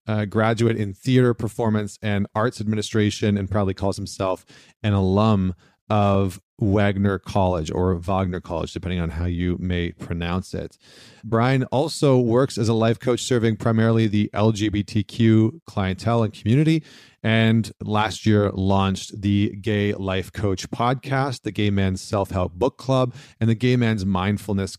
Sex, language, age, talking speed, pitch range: male, English, 30-49, 150 wpm, 95-115 Hz